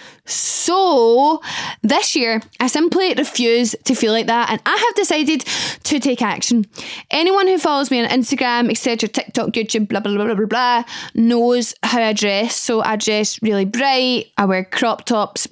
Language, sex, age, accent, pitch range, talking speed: English, female, 10-29, British, 225-275 Hz, 175 wpm